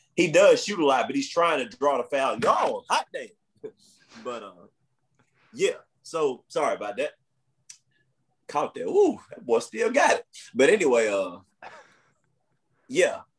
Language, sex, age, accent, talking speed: English, male, 30-49, American, 150 wpm